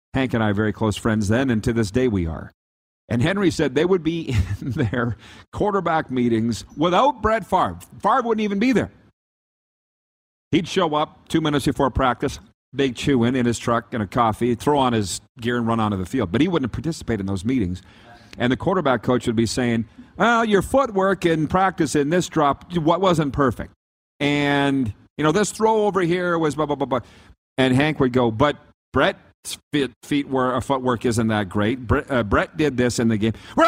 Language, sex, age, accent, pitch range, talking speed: English, male, 50-69, American, 110-145 Hz, 205 wpm